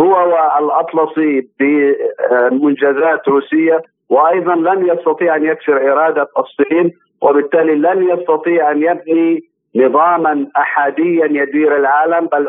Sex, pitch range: male, 140-160 Hz